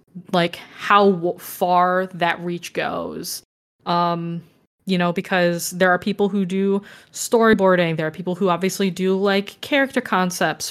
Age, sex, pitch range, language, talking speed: 20-39, female, 170-195 Hz, English, 140 wpm